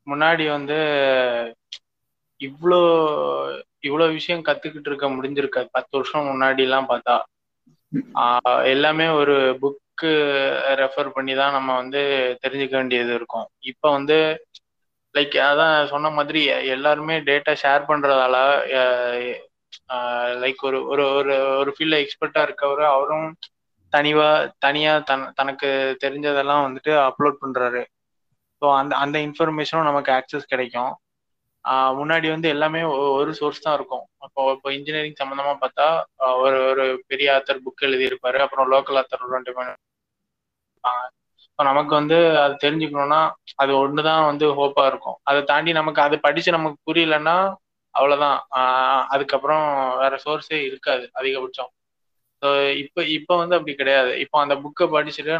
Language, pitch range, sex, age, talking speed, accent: Tamil, 135-150 Hz, male, 20-39, 120 wpm, native